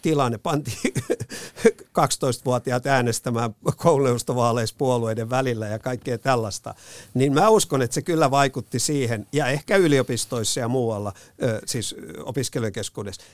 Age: 50-69